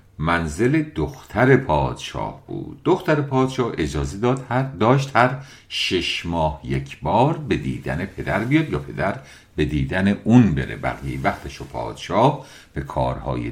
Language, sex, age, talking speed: English, male, 50-69, 135 wpm